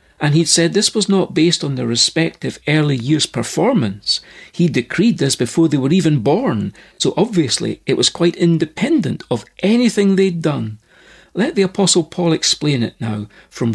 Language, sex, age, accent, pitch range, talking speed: English, male, 60-79, British, 130-190 Hz, 170 wpm